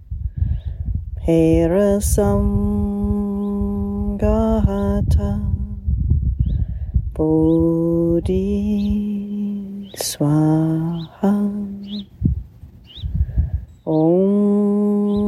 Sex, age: female, 30-49